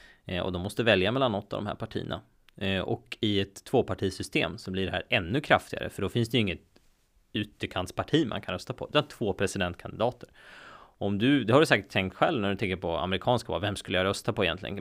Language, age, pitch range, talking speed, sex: Swedish, 20-39, 90-115 Hz, 215 wpm, male